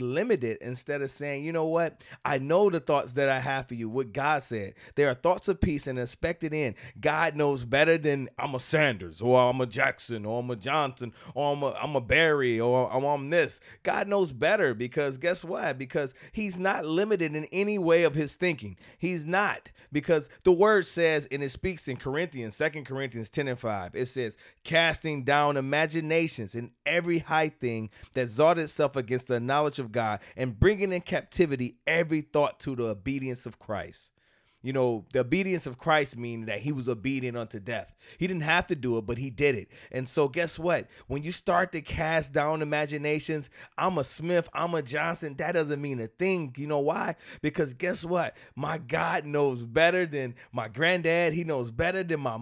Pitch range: 125-165 Hz